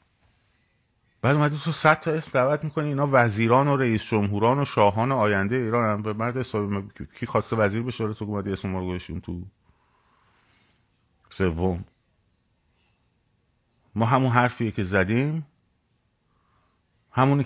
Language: Persian